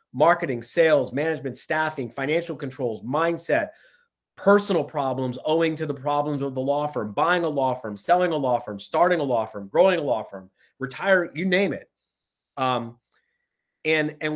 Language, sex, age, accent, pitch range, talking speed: English, male, 30-49, American, 130-170 Hz, 165 wpm